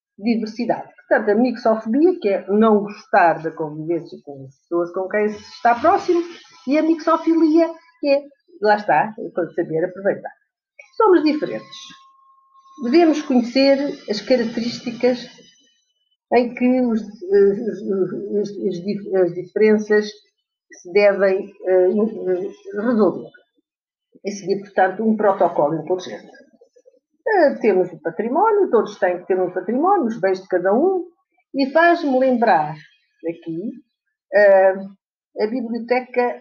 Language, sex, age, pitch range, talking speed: Portuguese, female, 50-69, 190-300 Hz, 120 wpm